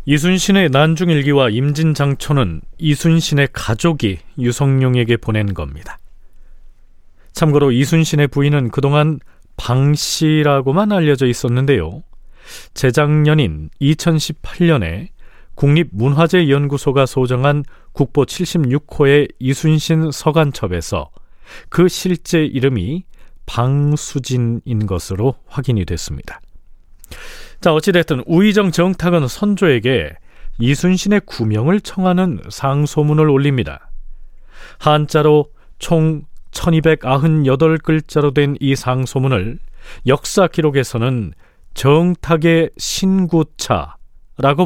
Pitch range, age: 115-155 Hz, 40-59